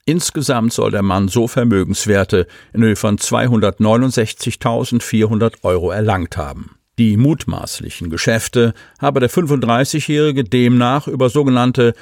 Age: 50-69